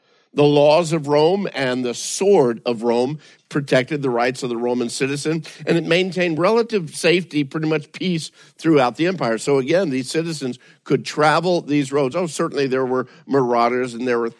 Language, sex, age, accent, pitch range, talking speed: English, male, 50-69, American, 125-160 Hz, 180 wpm